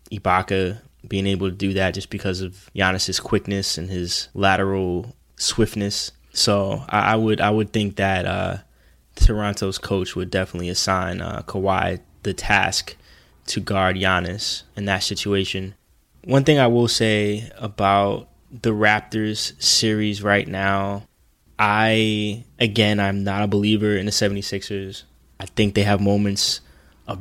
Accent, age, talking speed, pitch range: American, 10-29, 145 wpm, 90-105 Hz